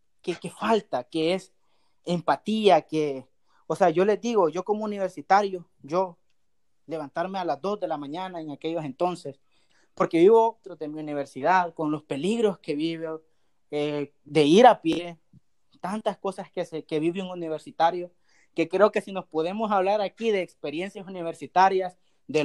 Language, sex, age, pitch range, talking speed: Spanish, male, 30-49, 155-195 Hz, 165 wpm